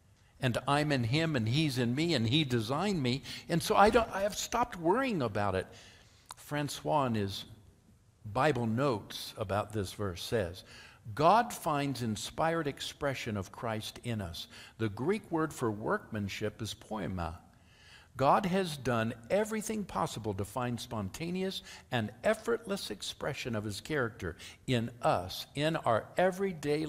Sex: male